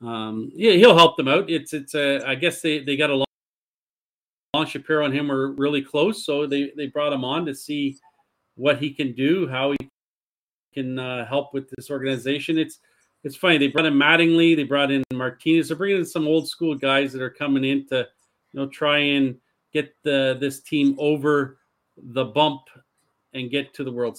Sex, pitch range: male, 135-165 Hz